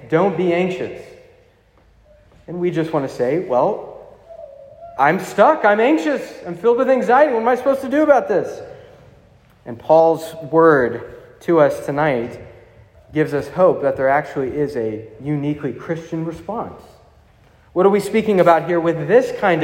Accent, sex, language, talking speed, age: American, male, English, 160 wpm, 30-49